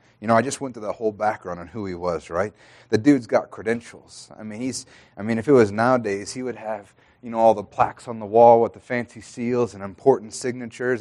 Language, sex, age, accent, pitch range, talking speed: English, male, 30-49, American, 95-120 Hz, 245 wpm